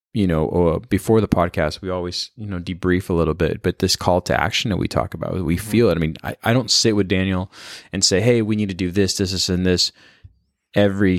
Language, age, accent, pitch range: English, 20-39, American, 90-105 Hz